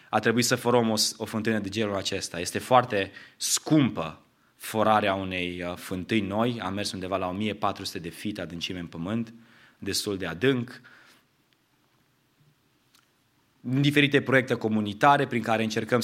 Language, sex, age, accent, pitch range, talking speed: English, male, 20-39, Romanian, 110-135 Hz, 130 wpm